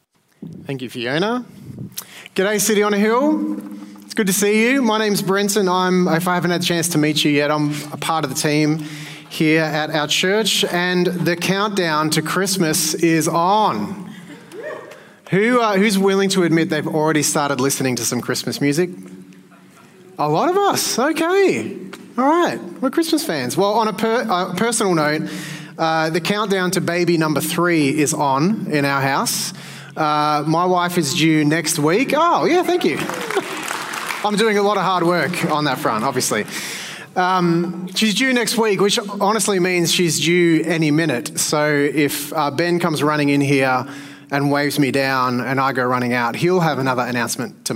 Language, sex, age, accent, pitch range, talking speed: English, male, 30-49, Australian, 145-195 Hz, 180 wpm